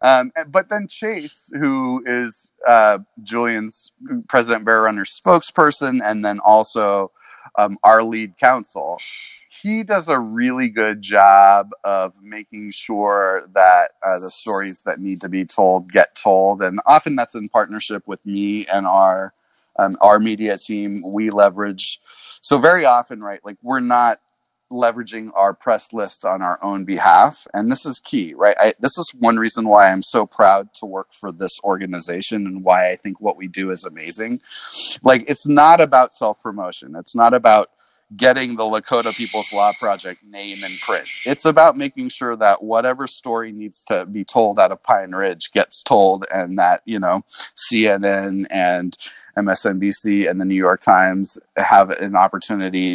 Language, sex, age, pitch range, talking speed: English, male, 30-49, 100-120 Hz, 165 wpm